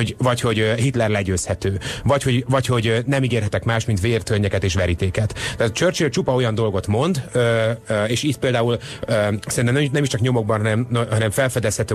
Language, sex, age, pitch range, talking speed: Hungarian, male, 30-49, 100-120 Hz, 145 wpm